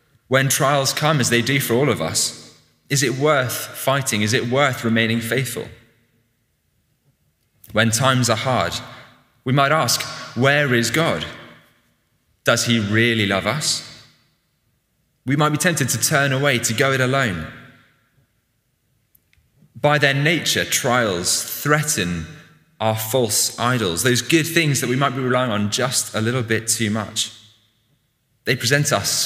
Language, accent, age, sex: English, British, 20-39, male